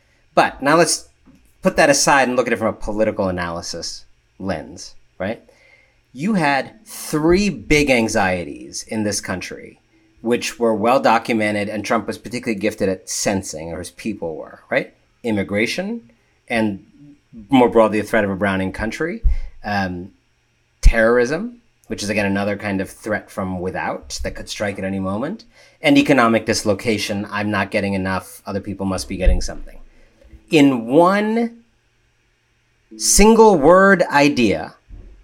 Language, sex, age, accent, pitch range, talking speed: English, male, 40-59, American, 105-165 Hz, 145 wpm